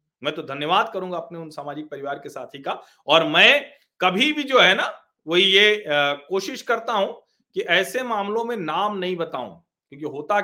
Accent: native